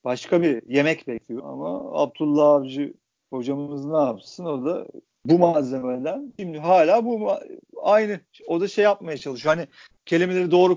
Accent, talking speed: native, 150 wpm